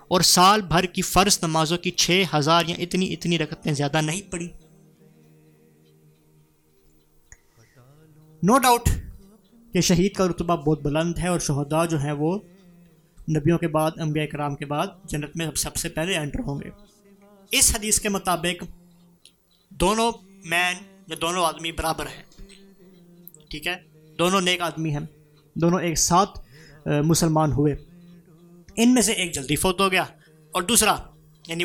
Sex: male